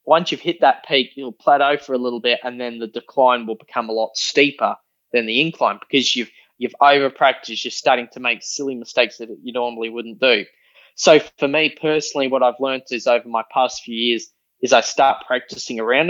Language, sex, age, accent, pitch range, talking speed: English, male, 20-39, Australian, 120-145 Hz, 210 wpm